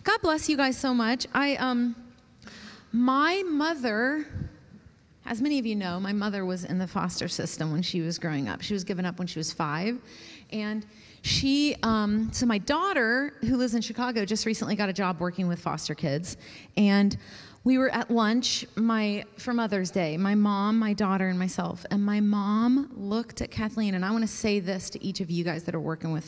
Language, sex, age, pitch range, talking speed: English, female, 30-49, 185-235 Hz, 205 wpm